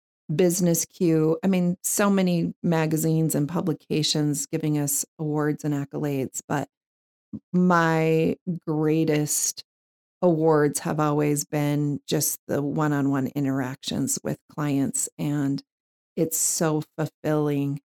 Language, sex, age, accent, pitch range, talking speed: English, female, 40-59, American, 145-170 Hz, 105 wpm